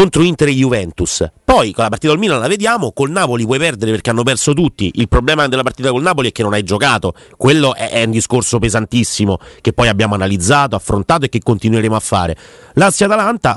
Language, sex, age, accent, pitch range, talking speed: Italian, male, 30-49, native, 105-135 Hz, 210 wpm